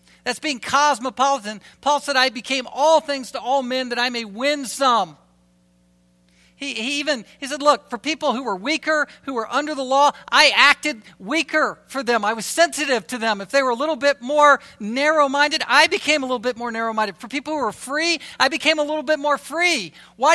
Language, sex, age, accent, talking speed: English, male, 50-69, American, 210 wpm